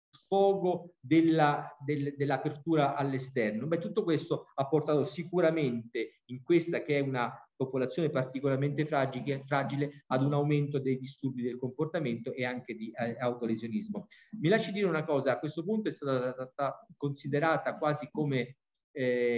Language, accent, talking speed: Italian, native, 140 wpm